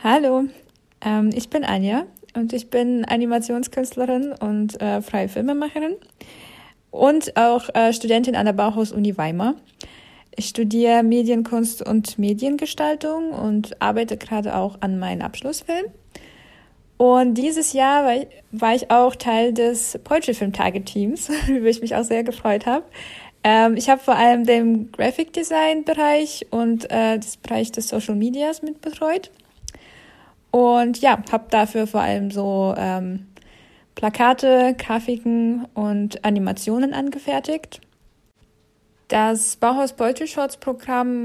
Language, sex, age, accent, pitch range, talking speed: German, female, 20-39, German, 215-265 Hz, 130 wpm